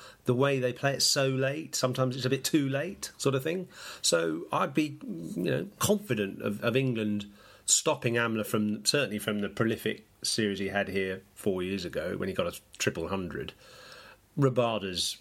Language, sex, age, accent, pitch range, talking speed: English, male, 40-59, British, 100-135 Hz, 180 wpm